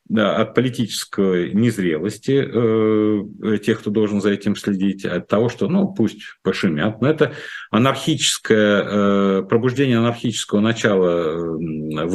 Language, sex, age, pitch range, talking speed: Russian, male, 50-69, 105-135 Hz, 120 wpm